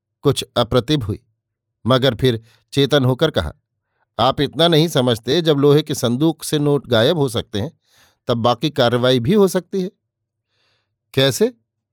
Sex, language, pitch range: male, Hindi, 115-150 Hz